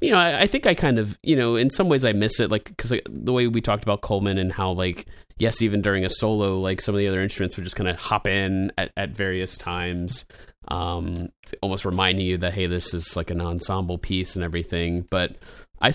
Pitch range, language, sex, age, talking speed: 85-100 Hz, English, male, 30-49, 245 wpm